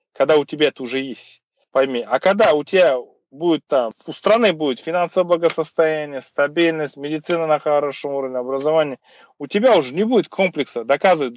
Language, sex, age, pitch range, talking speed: Russian, male, 20-39, 135-195 Hz, 165 wpm